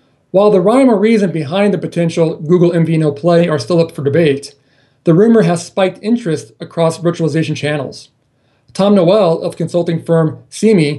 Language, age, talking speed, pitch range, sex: English, 40-59, 165 wpm, 145-175 Hz, male